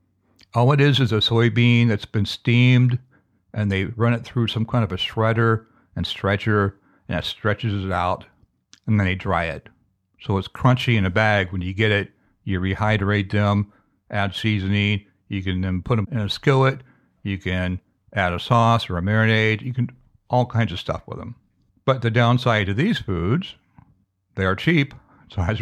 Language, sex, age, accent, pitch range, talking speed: English, male, 60-79, American, 95-115 Hz, 190 wpm